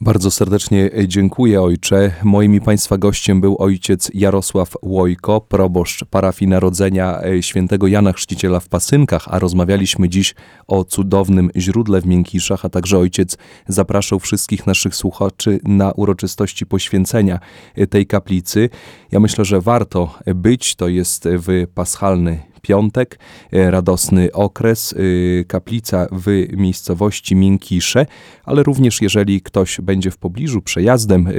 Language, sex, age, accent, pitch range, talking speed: Polish, male, 30-49, native, 90-100 Hz, 120 wpm